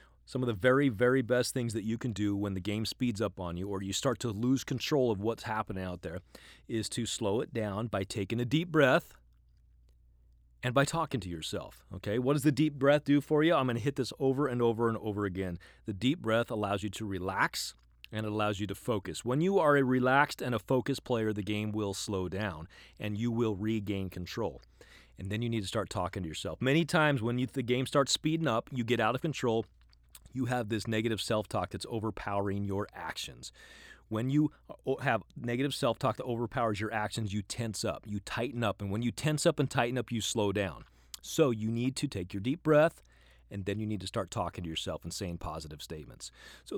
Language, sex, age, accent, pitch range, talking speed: English, male, 30-49, American, 100-135 Hz, 225 wpm